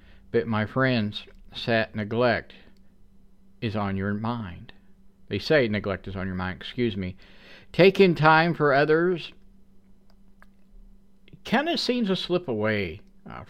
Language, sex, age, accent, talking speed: English, male, 50-69, American, 130 wpm